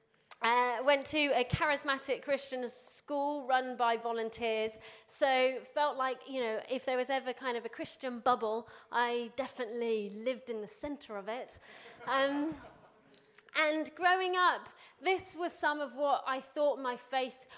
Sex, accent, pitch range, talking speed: female, British, 235-285 Hz, 155 wpm